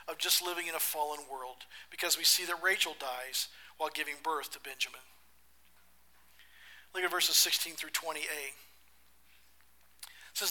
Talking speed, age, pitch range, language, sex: 150 wpm, 40-59, 130-190 Hz, English, male